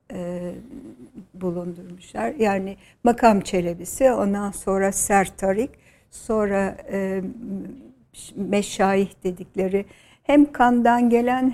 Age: 60-79